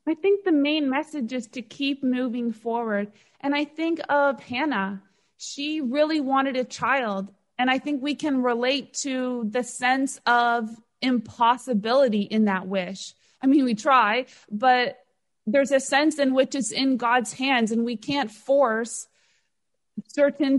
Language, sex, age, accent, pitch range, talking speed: English, female, 20-39, American, 225-280 Hz, 155 wpm